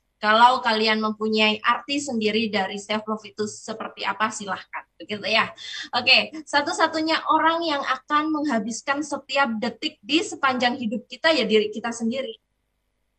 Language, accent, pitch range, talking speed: Indonesian, native, 215-260 Hz, 130 wpm